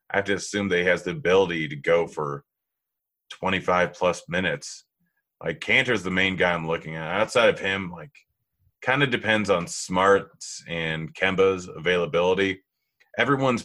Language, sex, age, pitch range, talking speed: English, male, 30-49, 80-95 Hz, 160 wpm